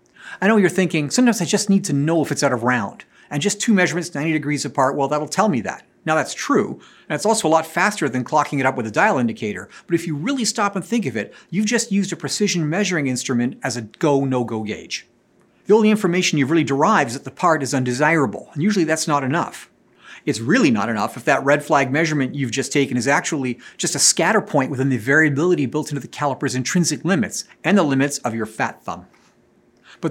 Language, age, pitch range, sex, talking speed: English, 40-59, 140-195 Hz, male, 230 wpm